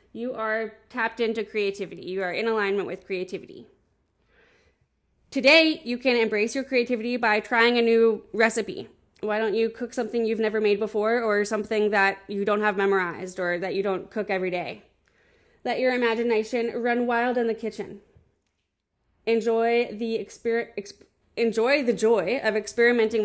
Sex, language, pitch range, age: female, English, 205-240 Hz, 20-39